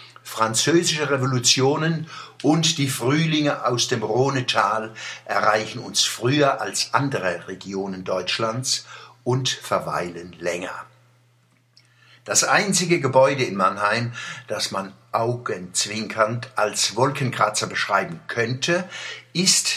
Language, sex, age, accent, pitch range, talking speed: German, male, 60-79, German, 110-140 Hz, 95 wpm